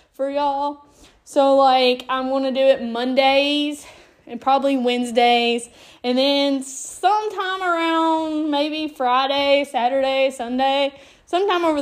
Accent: American